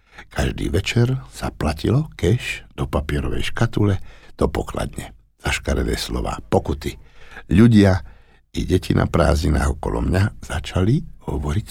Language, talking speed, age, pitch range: Slovak, 110 wpm, 60-79, 75-120 Hz